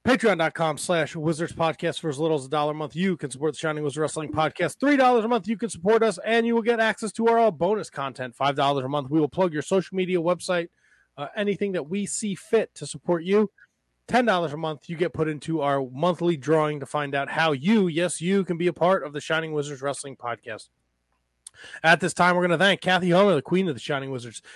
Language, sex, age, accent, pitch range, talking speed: English, male, 20-39, American, 145-190 Hz, 245 wpm